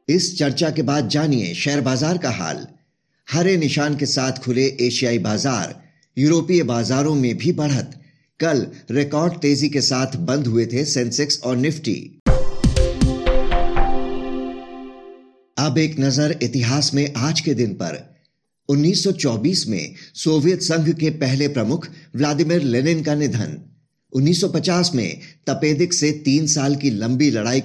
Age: 50-69